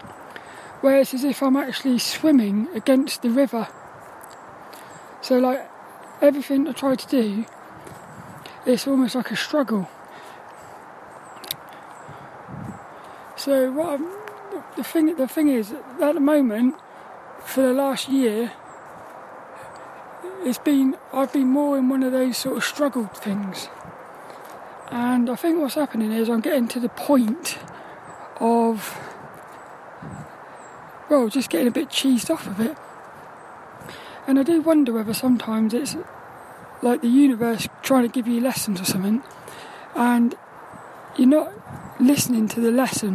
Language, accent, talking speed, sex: English, British, 130 wpm, male